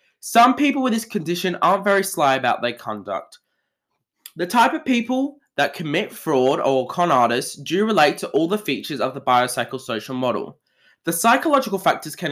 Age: 20-39